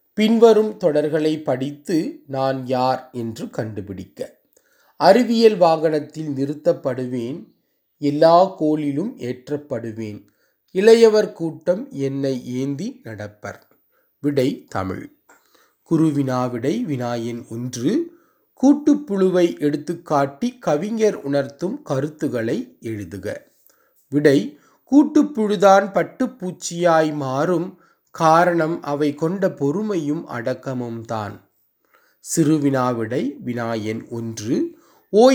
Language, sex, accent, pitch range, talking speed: Tamil, male, native, 135-195 Hz, 75 wpm